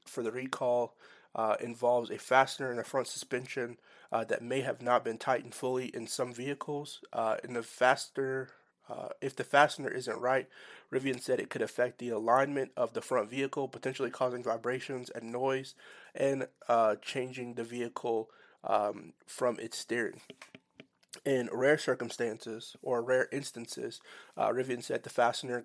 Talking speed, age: 160 wpm, 30-49